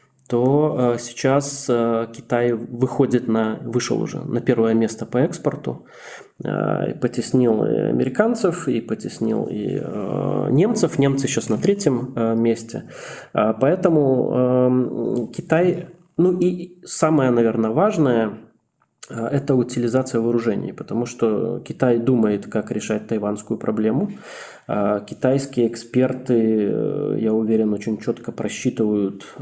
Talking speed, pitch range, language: 100 wpm, 115-140 Hz, Russian